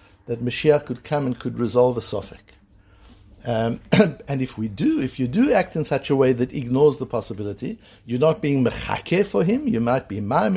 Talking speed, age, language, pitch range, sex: 205 wpm, 60-79, English, 105-160 Hz, male